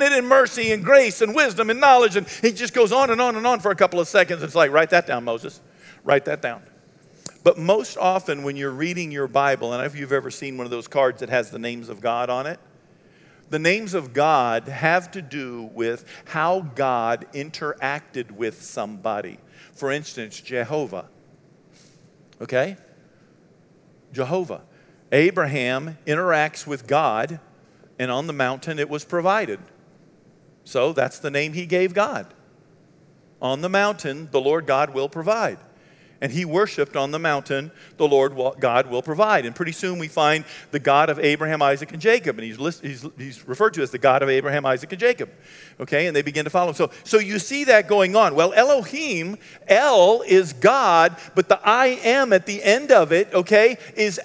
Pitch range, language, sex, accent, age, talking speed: 140-195 Hz, English, male, American, 50-69, 190 wpm